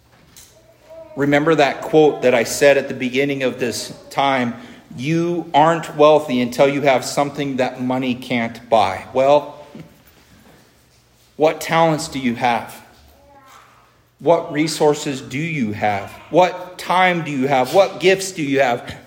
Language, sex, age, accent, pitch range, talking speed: English, male, 40-59, American, 130-155 Hz, 140 wpm